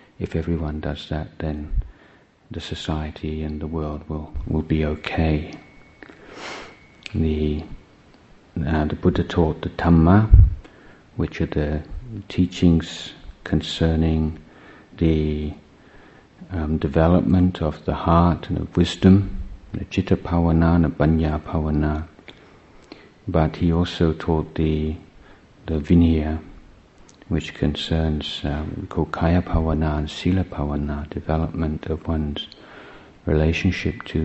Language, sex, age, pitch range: Thai, male, 50-69, 75-85 Hz